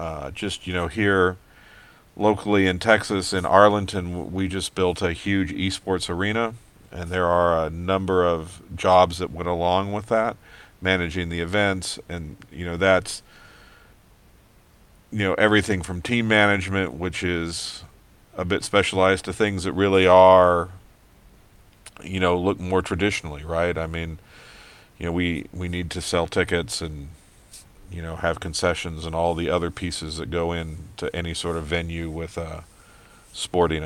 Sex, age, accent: male, 40-59, American